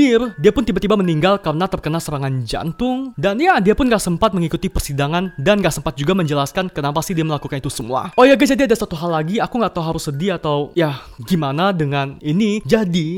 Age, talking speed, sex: 20-39, 210 wpm, male